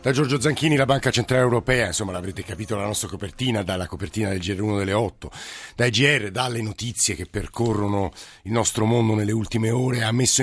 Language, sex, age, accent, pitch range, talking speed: Italian, male, 50-69, native, 105-125 Hz, 190 wpm